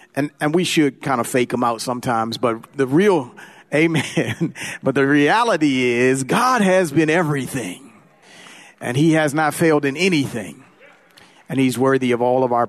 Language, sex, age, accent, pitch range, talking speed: English, male, 40-59, American, 110-135 Hz, 170 wpm